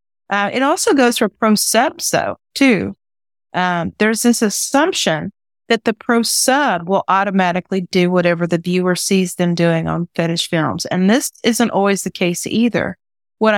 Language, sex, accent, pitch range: English, female, American, 175-210 Hz